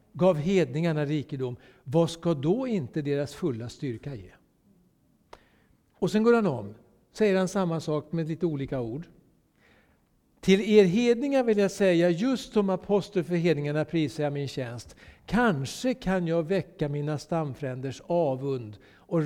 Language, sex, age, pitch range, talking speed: Swedish, male, 60-79, 125-175 Hz, 140 wpm